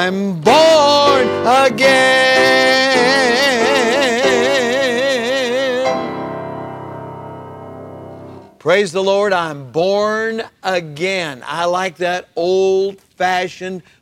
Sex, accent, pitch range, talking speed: male, American, 160-220 Hz, 55 wpm